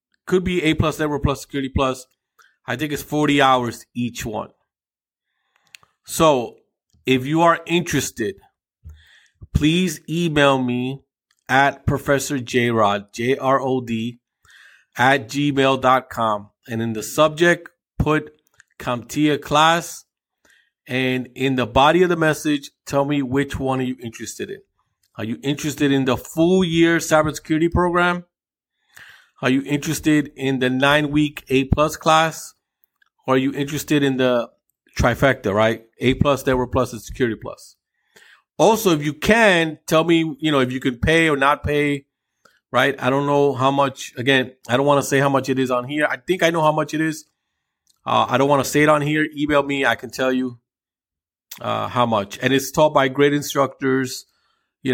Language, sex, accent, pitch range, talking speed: English, male, American, 125-150 Hz, 165 wpm